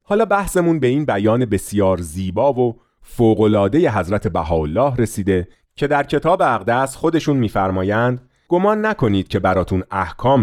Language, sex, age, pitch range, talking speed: Persian, male, 40-59, 100-150 Hz, 130 wpm